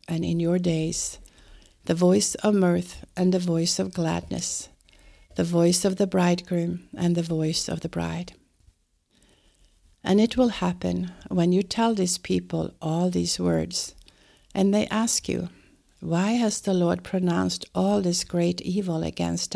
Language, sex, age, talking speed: English, female, 60-79, 155 wpm